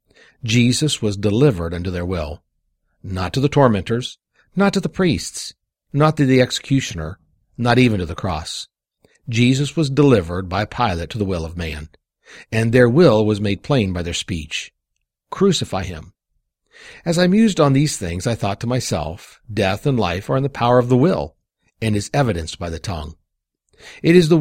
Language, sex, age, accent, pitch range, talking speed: English, male, 50-69, American, 90-135 Hz, 180 wpm